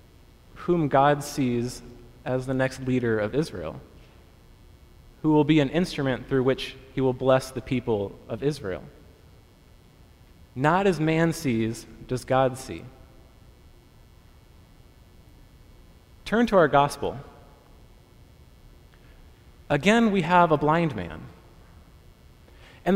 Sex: male